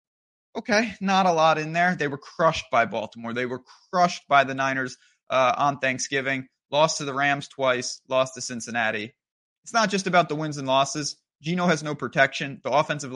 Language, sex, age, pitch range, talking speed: English, male, 20-39, 135-160 Hz, 190 wpm